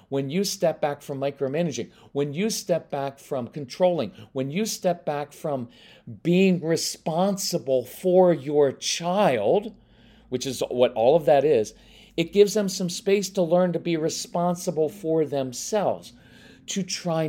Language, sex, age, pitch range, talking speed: English, male, 40-59, 135-185 Hz, 150 wpm